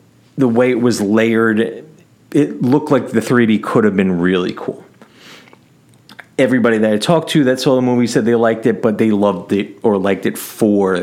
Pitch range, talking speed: 105-135 Hz, 195 wpm